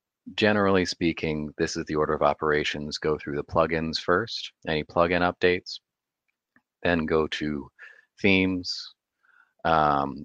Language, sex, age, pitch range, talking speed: English, male, 30-49, 75-80 Hz, 125 wpm